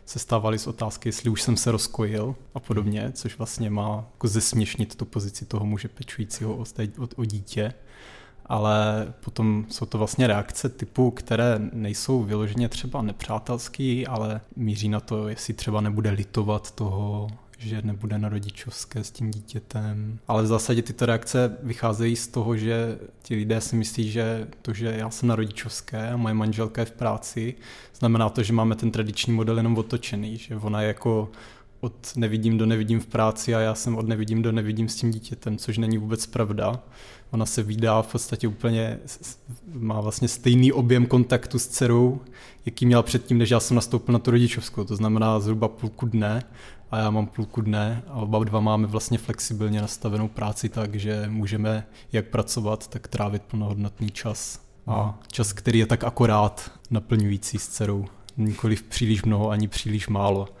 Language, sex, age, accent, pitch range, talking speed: Czech, male, 20-39, native, 105-120 Hz, 170 wpm